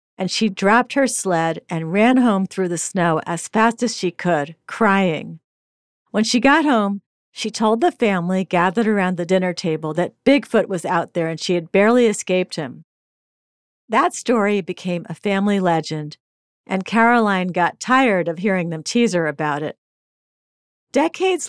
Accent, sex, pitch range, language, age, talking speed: American, female, 170-230 Hz, English, 50-69, 165 wpm